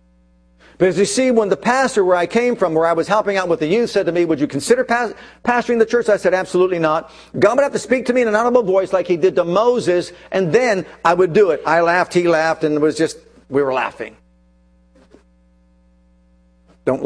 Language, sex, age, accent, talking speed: English, male, 50-69, American, 230 wpm